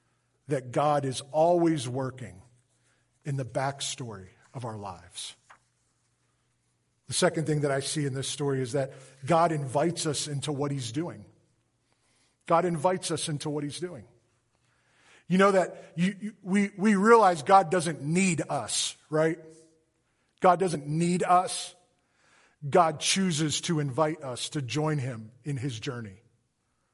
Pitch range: 145-190 Hz